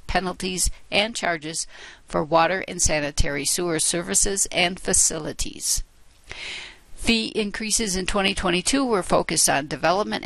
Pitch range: 160-200 Hz